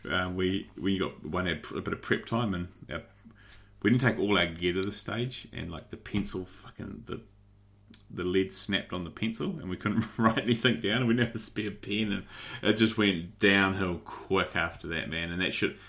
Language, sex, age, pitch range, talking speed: English, male, 30-49, 90-105 Hz, 210 wpm